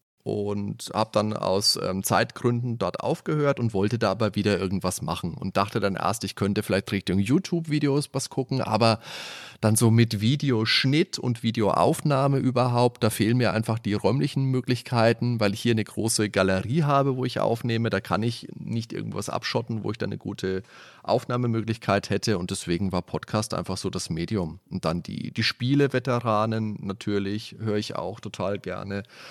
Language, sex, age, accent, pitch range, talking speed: German, male, 30-49, German, 100-125 Hz, 170 wpm